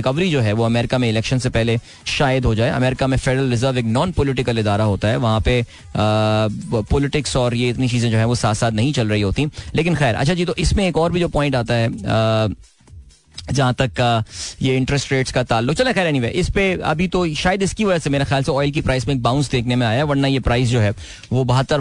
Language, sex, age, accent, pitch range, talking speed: Hindi, male, 20-39, native, 115-145 Hz, 185 wpm